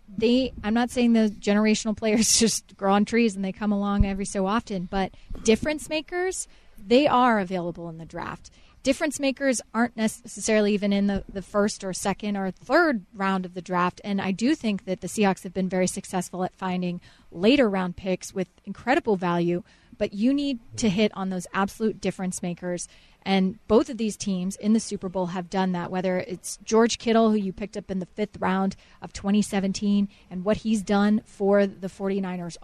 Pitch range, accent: 190-225 Hz, American